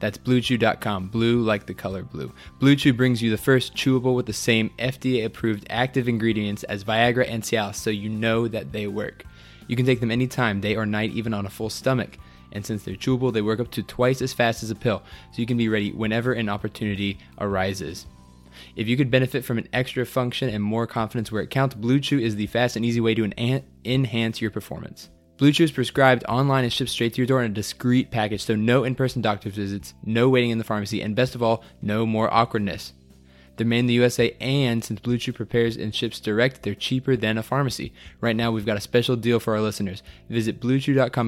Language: English